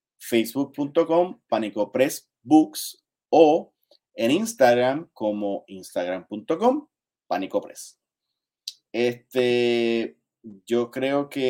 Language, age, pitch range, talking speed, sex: Spanish, 30-49, 105-130 Hz, 80 wpm, male